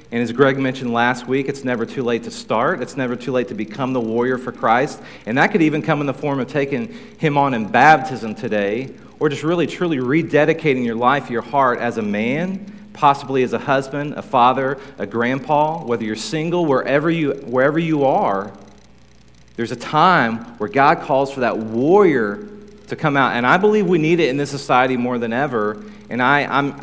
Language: English